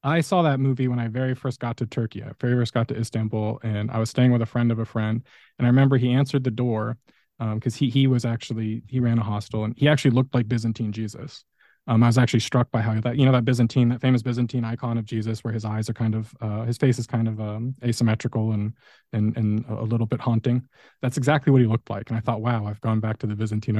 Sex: male